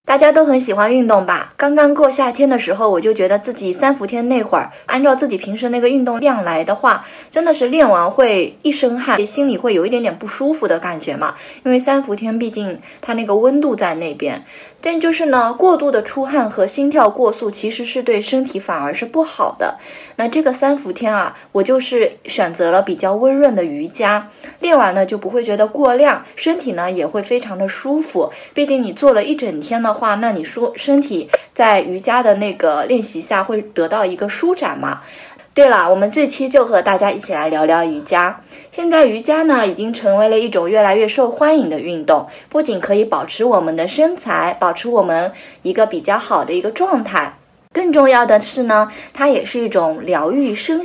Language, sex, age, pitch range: Chinese, female, 20-39, 210-290 Hz